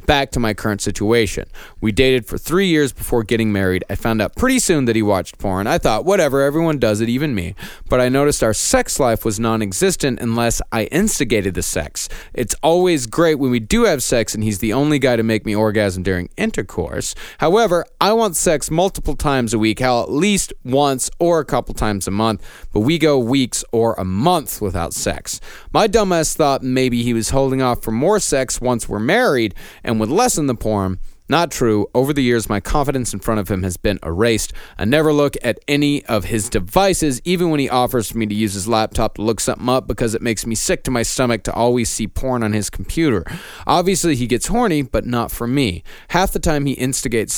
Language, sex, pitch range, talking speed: English, male, 110-145 Hz, 215 wpm